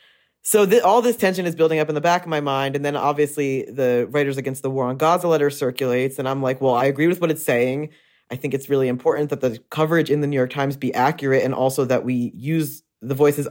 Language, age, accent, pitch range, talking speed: English, 20-39, American, 130-150 Hz, 255 wpm